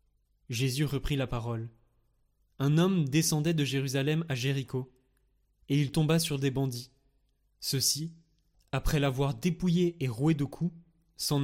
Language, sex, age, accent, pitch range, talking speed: French, male, 20-39, French, 130-155 Hz, 140 wpm